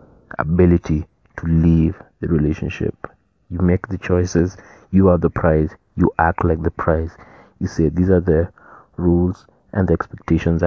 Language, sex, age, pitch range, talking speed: English, male, 30-49, 80-95 Hz, 150 wpm